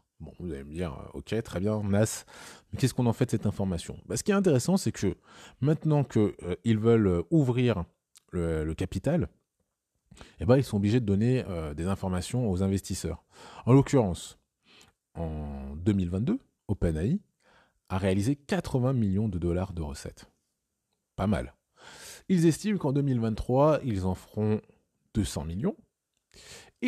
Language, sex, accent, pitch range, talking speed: French, male, French, 90-125 Hz, 150 wpm